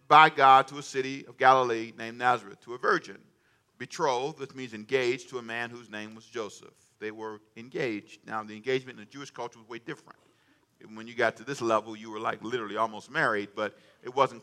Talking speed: 210 wpm